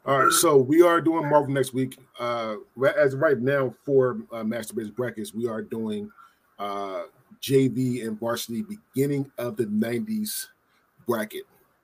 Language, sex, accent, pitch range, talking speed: English, male, American, 125-150 Hz, 155 wpm